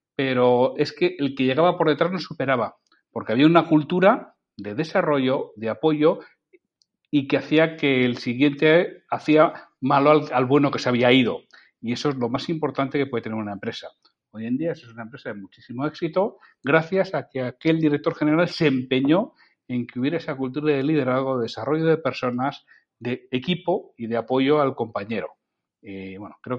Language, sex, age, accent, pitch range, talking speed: Spanish, male, 40-59, Spanish, 125-155 Hz, 185 wpm